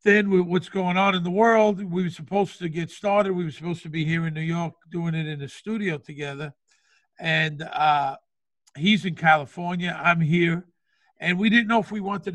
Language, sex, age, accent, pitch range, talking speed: English, male, 50-69, American, 155-195 Hz, 205 wpm